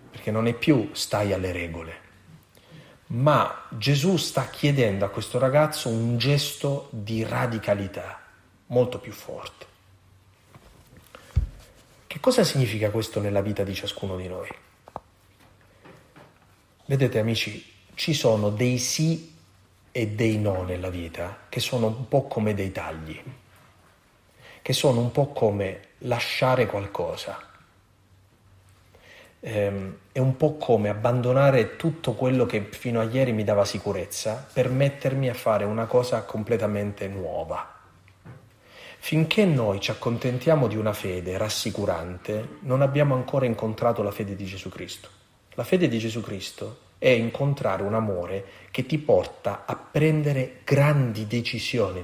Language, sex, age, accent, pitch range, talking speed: Italian, male, 40-59, native, 100-130 Hz, 130 wpm